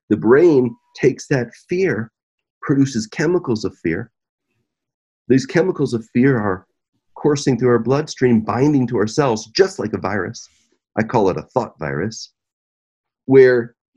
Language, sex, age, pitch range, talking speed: English, male, 40-59, 110-140 Hz, 140 wpm